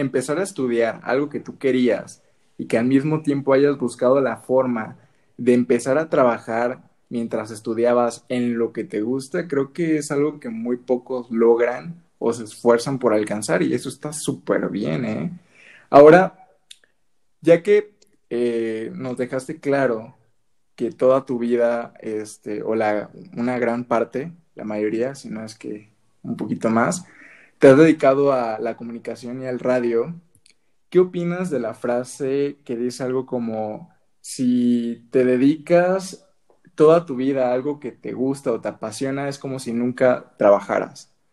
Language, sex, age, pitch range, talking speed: Spanish, male, 20-39, 115-155 Hz, 160 wpm